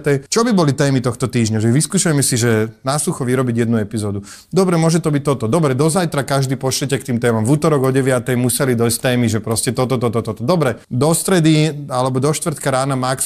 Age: 30-49